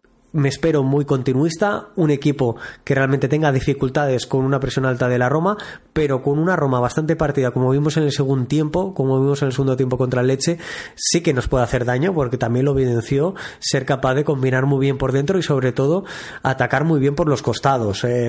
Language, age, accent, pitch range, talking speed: Spanish, 20-39, Spanish, 130-150 Hz, 215 wpm